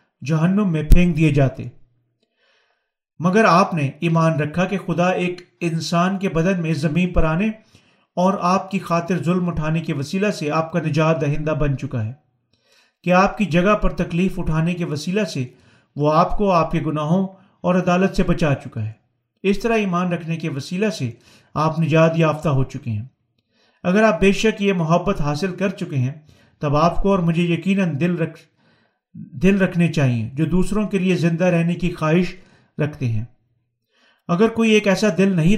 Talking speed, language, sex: 180 wpm, Urdu, male